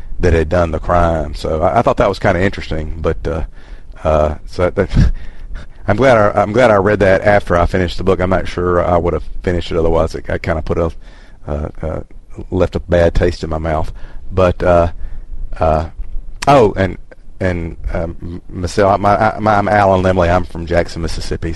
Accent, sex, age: American, male, 40-59